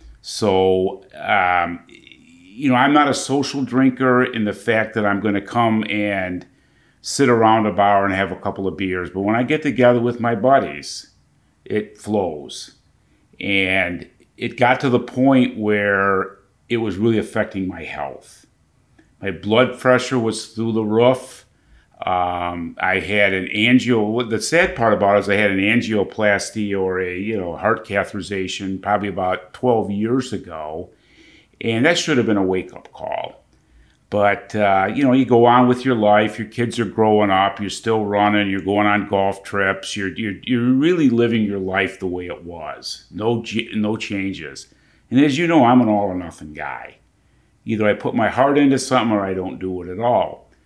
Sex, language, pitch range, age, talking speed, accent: male, English, 95-120 Hz, 50-69, 180 wpm, American